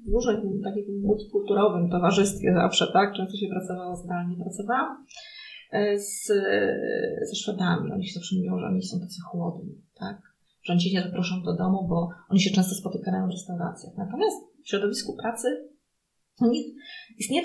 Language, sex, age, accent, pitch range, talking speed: Polish, female, 30-49, native, 185-230 Hz, 145 wpm